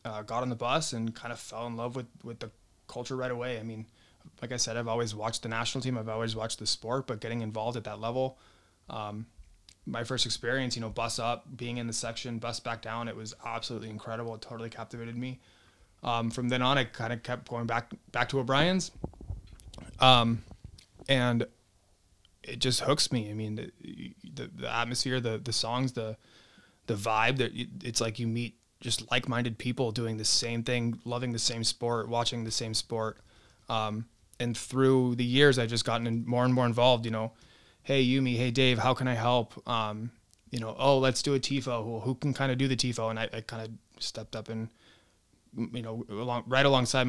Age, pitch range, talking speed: 20-39, 110-125 Hz, 210 wpm